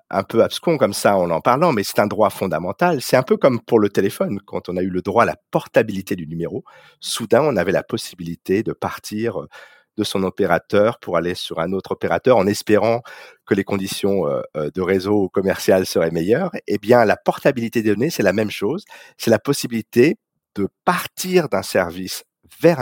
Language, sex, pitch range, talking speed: French, male, 100-145 Hz, 195 wpm